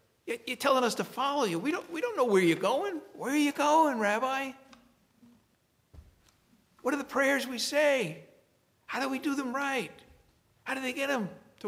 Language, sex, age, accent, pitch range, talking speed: English, male, 60-79, American, 145-240 Hz, 190 wpm